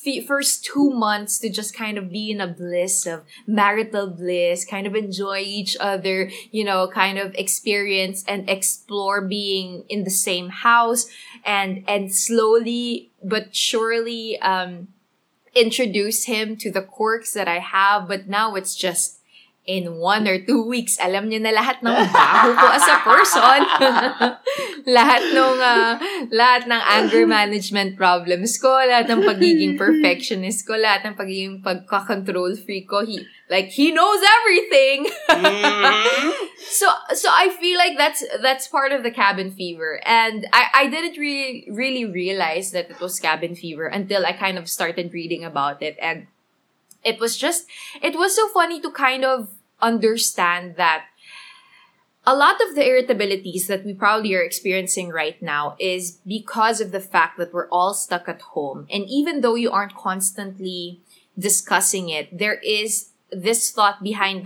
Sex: female